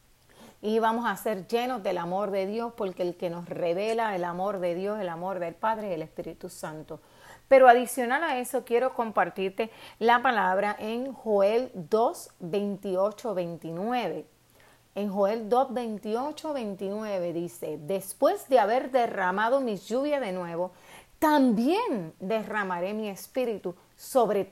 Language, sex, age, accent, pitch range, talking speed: Spanish, female, 30-49, American, 185-245 Hz, 145 wpm